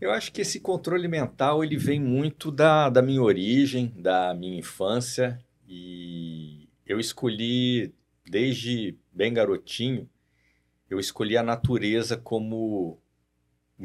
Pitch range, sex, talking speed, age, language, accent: 80-120 Hz, male, 120 wpm, 50-69, Portuguese, Brazilian